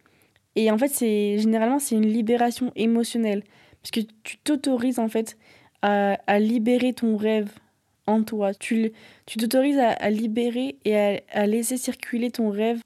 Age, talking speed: 20-39, 170 wpm